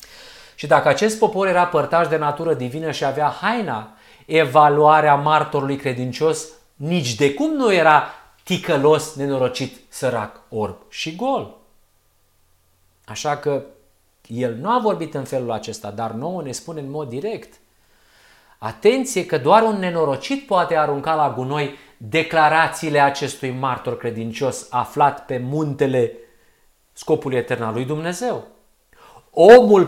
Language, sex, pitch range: Romanian, male, 135-180 Hz